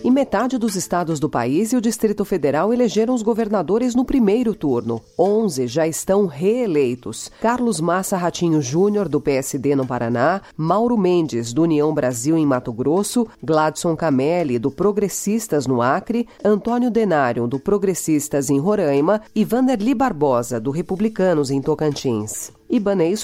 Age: 40-59